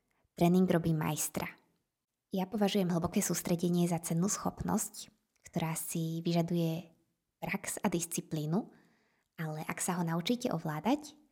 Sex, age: female, 20-39